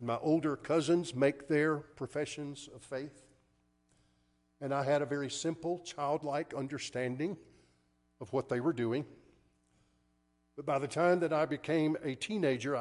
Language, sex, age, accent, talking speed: English, male, 50-69, American, 140 wpm